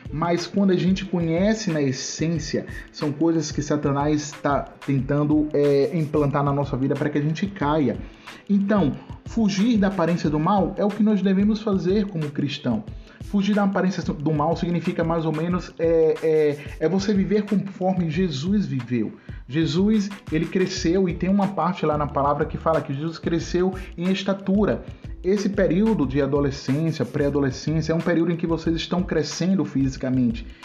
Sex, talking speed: male, 165 wpm